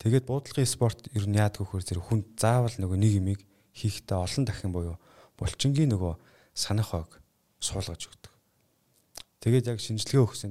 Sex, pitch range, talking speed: male, 90-110 Hz, 160 wpm